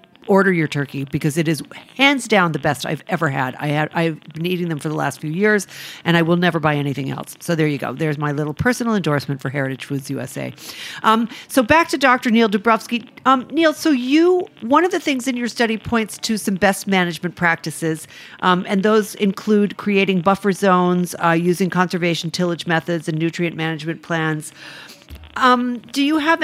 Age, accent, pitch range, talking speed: 50-69, American, 165-200 Hz, 195 wpm